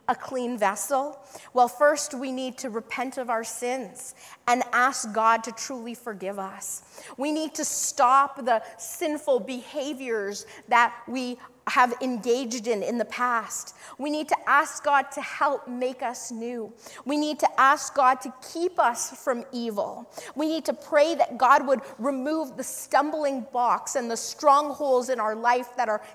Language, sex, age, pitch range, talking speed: English, female, 30-49, 235-295 Hz, 170 wpm